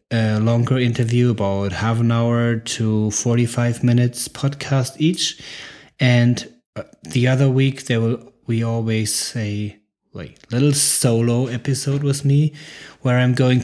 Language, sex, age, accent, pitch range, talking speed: English, male, 20-39, German, 105-130 Hz, 130 wpm